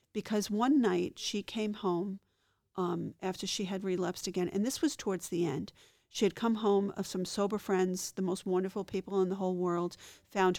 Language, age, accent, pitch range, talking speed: English, 40-59, American, 175-195 Hz, 200 wpm